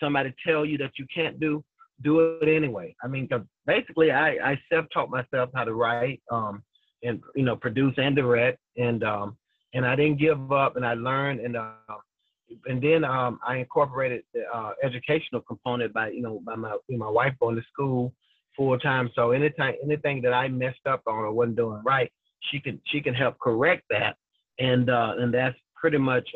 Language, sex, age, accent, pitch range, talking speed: English, male, 30-49, American, 120-145 Hz, 200 wpm